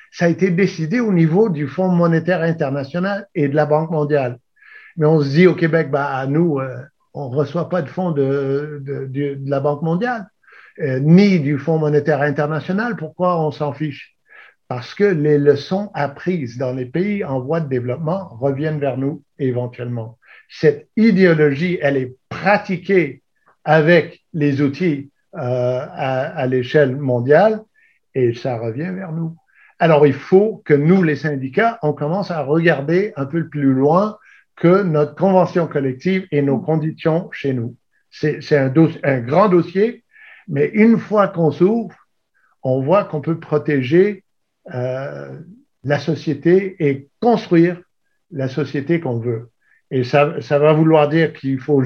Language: French